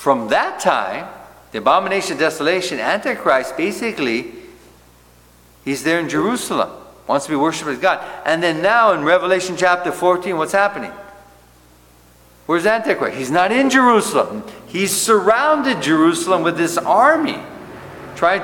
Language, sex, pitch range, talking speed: English, male, 120-200 Hz, 135 wpm